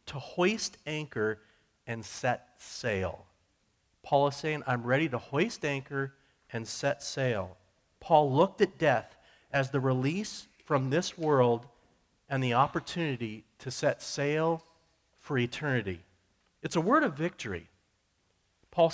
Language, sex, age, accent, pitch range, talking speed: English, male, 40-59, American, 115-155 Hz, 130 wpm